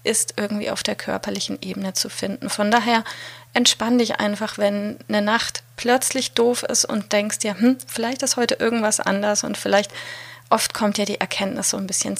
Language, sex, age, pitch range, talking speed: German, female, 30-49, 200-240 Hz, 185 wpm